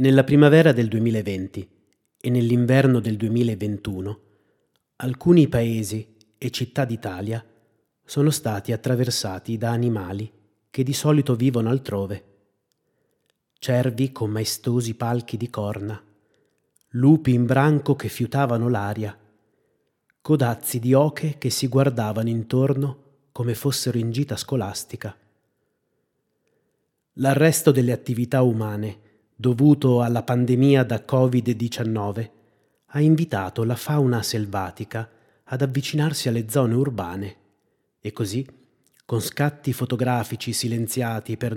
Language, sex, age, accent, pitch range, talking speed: Italian, male, 30-49, native, 110-130 Hz, 105 wpm